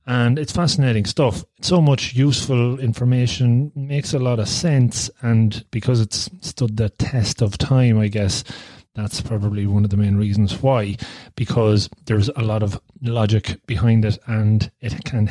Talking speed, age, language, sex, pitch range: 165 wpm, 30-49, English, male, 105-125 Hz